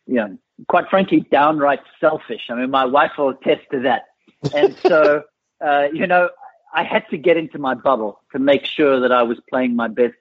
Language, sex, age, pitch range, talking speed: English, male, 50-69, 130-160 Hz, 210 wpm